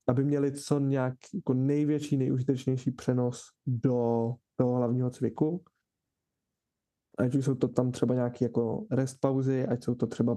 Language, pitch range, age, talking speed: Czech, 125-140 Hz, 20-39, 150 wpm